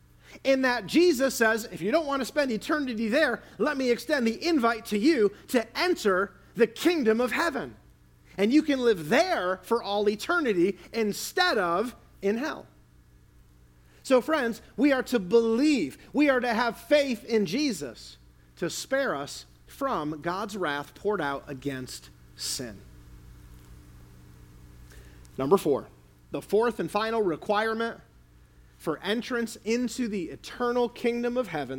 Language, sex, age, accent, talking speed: English, male, 40-59, American, 140 wpm